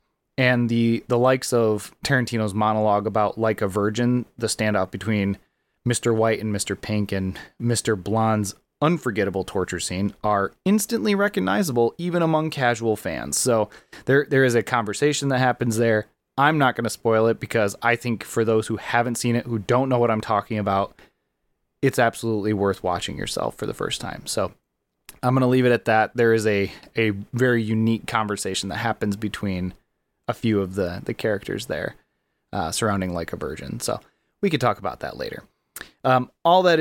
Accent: American